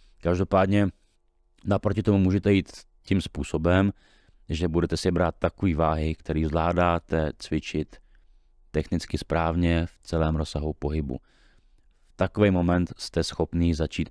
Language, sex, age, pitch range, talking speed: Czech, male, 30-49, 75-90 Hz, 120 wpm